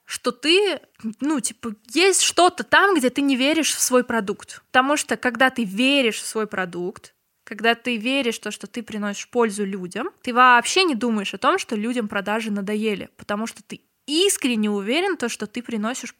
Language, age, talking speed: Russian, 20-39, 190 wpm